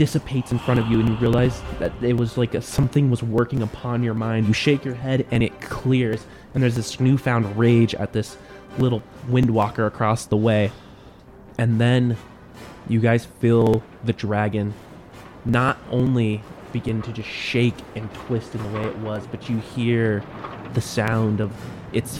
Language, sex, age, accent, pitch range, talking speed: English, male, 20-39, American, 105-125 Hz, 175 wpm